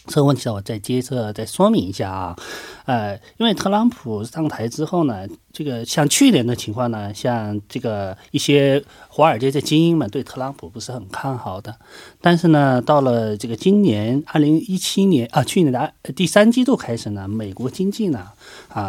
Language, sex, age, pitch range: Korean, male, 30-49, 110-150 Hz